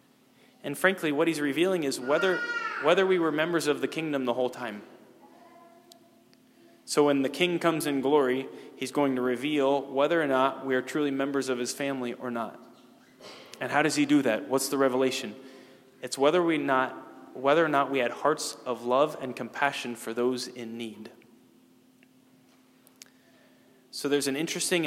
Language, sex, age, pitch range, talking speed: English, male, 20-39, 125-150 Hz, 170 wpm